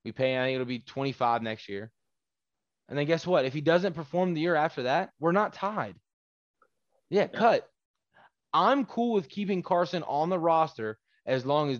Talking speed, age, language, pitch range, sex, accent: 190 wpm, 20-39, English, 125-155 Hz, male, American